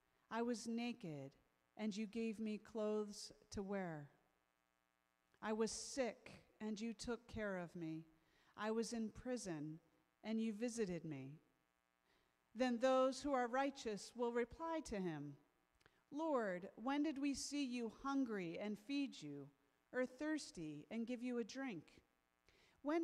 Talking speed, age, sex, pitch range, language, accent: 140 wpm, 40-59, female, 165-245 Hz, English, American